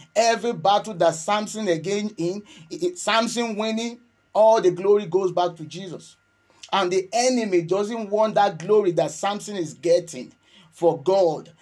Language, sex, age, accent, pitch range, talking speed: English, male, 30-49, Nigerian, 175-225 Hz, 145 wpm